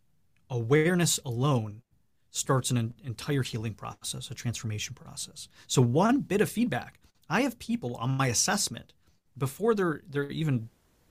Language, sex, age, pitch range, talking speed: English, male, 30-49, 115-150 Hz, 135 wpm